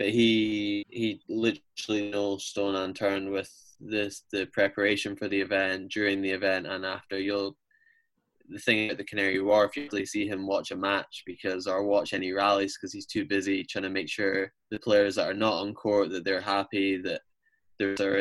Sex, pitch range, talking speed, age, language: male, 95-105 Hz, 195 wpm, 10-29, English